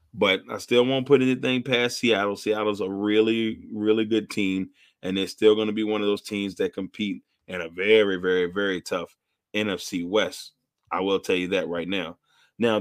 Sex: male